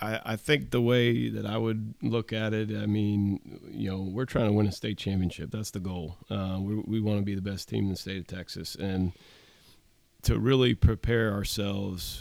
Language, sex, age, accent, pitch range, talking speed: English, male, 40-59, American, 95-110 Hz, 210 wpm